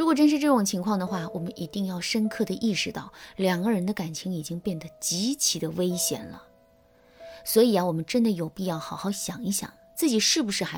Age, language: 20-39, Chinese